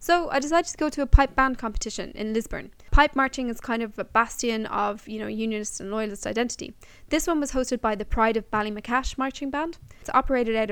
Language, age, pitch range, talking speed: English, 10-29, 215-250 Hz, 225 wpm